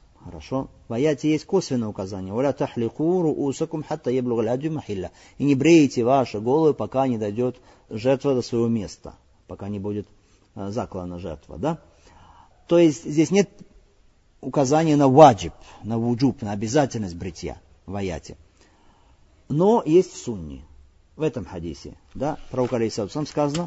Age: 50-69